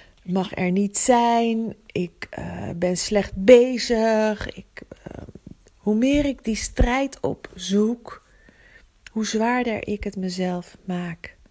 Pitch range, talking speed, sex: 160-205 Hz, 120 wpm, female